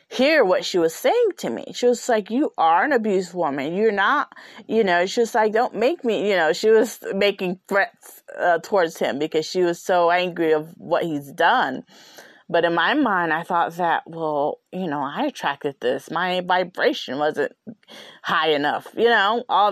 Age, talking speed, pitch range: 30-49, 195 wpm, 170-250 Hz